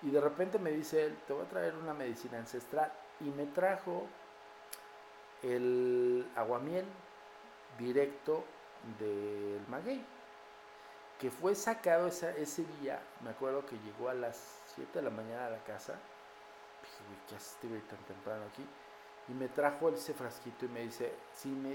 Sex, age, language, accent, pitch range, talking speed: male, 50-69, Spanish, Mexican, 120-155 Hz, 150 wpm